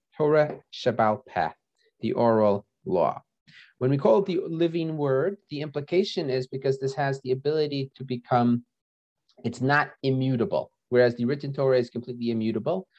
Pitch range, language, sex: 120-150 Hz, English, male